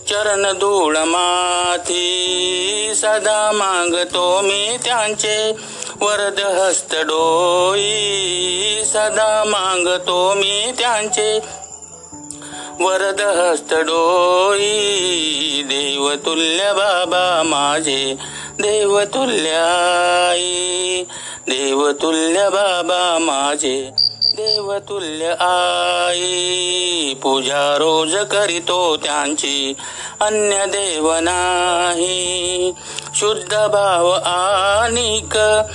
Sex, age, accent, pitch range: male, 60-79, native, 165-205 Hz